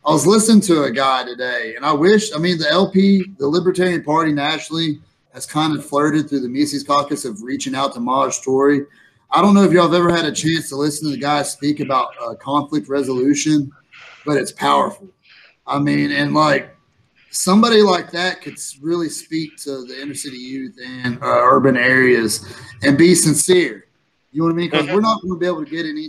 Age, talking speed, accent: 30-49, 210 wpm, American